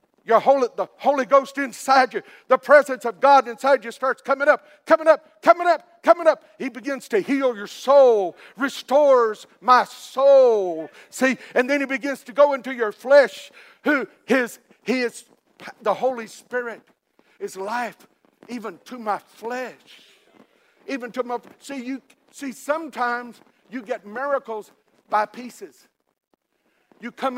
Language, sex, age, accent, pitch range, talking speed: English, male, 60-79, American, 235-265 Hz, 145 wpm